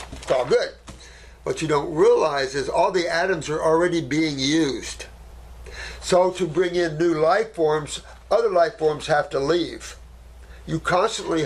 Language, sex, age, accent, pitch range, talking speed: English, male, 60-79, American, 130-175 Hz, 150 wpm